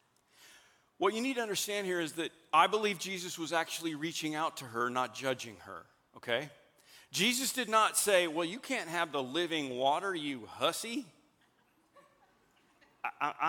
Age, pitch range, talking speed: 50-69, 170-225 Hz, 155 wpm